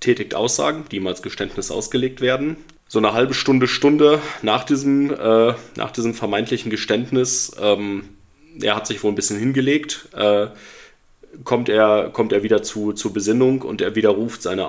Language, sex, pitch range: German, male, 105-130 Hz